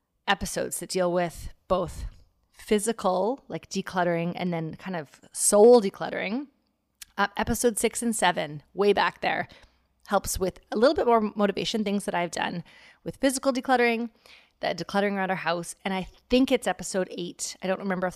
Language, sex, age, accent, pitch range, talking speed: English, female, 30-49, American, 175-230 Hz, 170 wpm